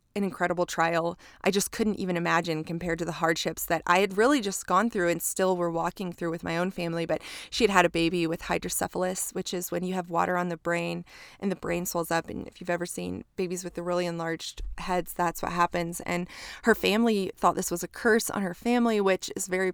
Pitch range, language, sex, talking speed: 175-195 Hz, English, female, 235 wpm